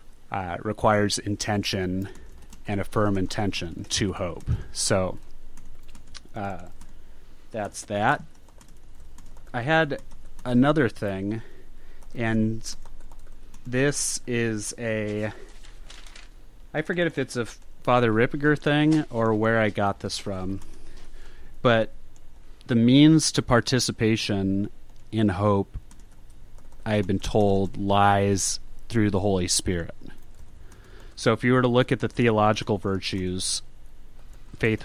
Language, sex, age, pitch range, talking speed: English, male, 30-49, 95-120 Hz, 105 wpm